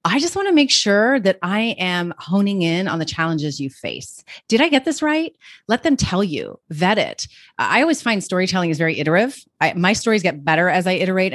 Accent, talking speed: American, 220 wpm